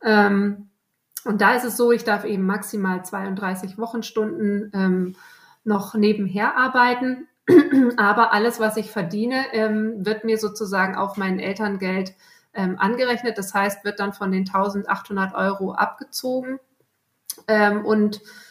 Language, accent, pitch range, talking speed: German, German, 195-225 Hz, 115 wpm